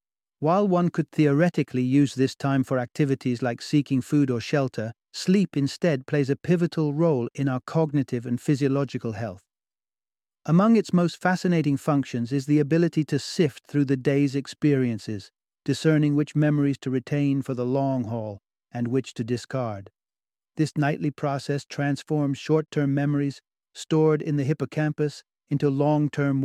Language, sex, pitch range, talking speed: English, male, 130-155 Hz, 150 wpm